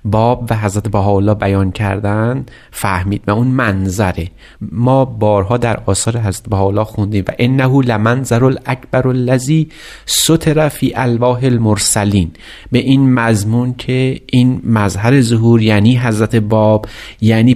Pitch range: 105-135 Hz